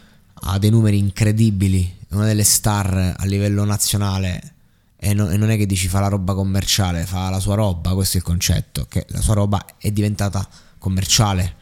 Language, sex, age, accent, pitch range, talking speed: Italian, male, 20-39, native, 95-115 Hz, 180 wpm